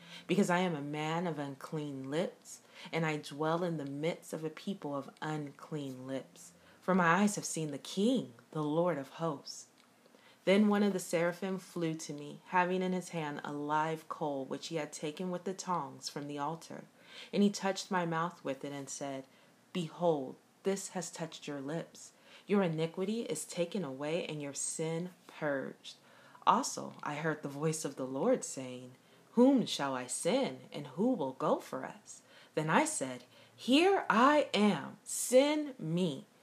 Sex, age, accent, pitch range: female, 30-49, American, 150-195 Hz